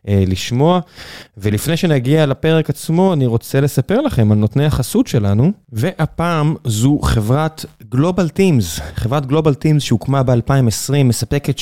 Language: Hebrew